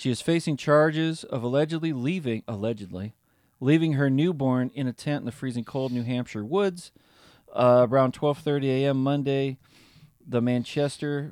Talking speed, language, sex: 150 wpm, English, male